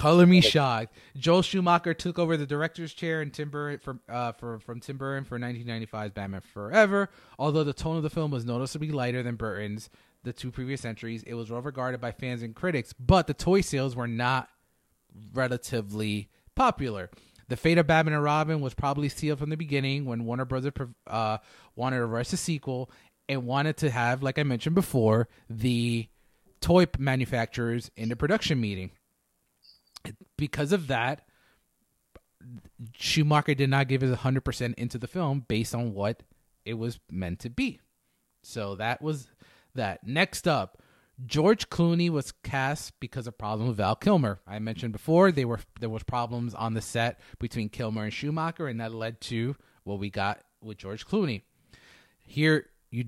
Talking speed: 170 wpm